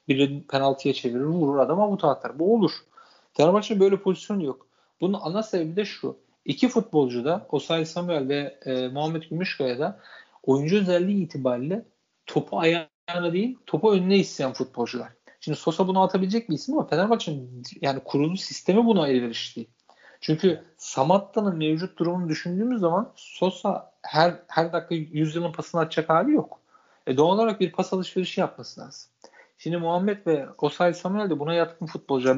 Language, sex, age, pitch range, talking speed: Turkish, male, 40-59, 145-195 Hz, 155 wpm